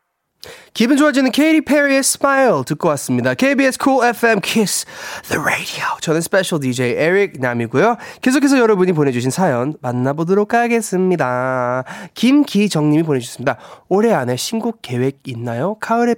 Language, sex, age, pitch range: Korean, male, 20-39, 130-210 Hz